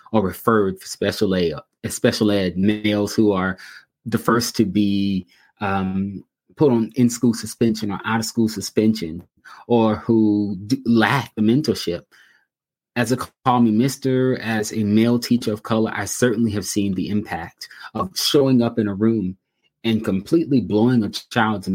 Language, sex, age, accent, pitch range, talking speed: English, male, 30-49, American, 100-115 Hz, 150 wpm